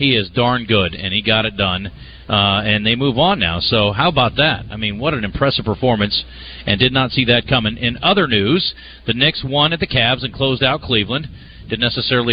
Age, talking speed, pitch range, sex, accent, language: 40-59, 225 wpm, 105-130 Hz, male, American, English